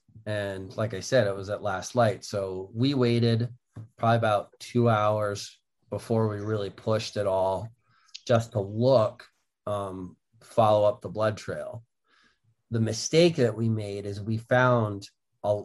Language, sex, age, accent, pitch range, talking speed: English, male, 30-49, American, 105-125 Hz, 155 wpm